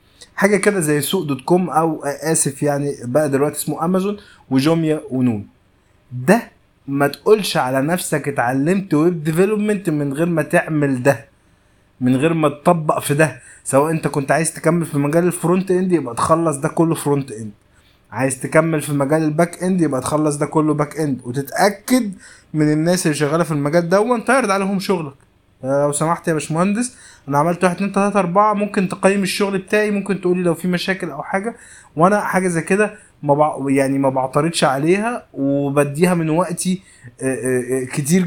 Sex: male